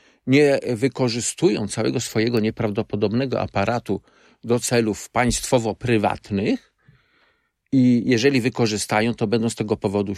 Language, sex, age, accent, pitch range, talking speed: Polish, male, 50-69, native, 110-145 Hz, 100 wpm